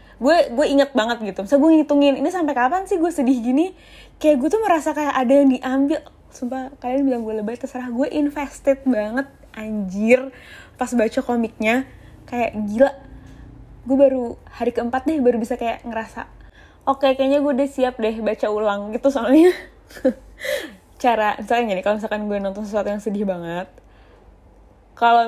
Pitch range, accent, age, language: 210-265 Hz, native, 10-29, Indonesian